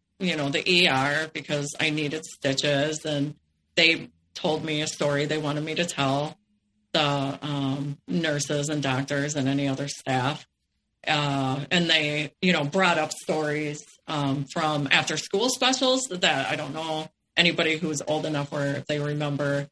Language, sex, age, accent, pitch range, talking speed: English, female, 40-59, American, 145-180 Hz, 160 wpm